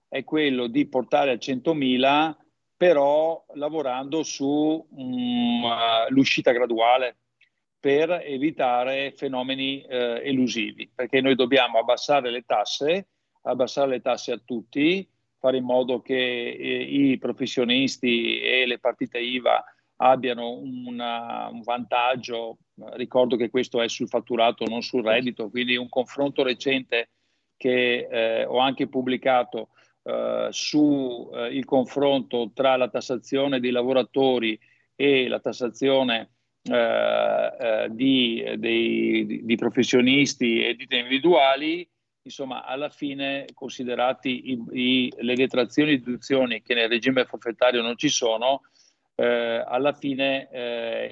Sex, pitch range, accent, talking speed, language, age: male, 120-135 Hz, native, 125 wpm, Italian, 50-69